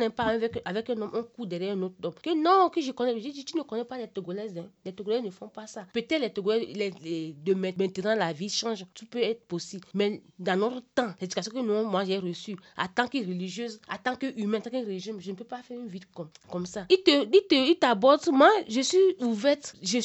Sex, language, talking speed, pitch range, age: female, French, 245 wpm, 200-265 Hz, 30-49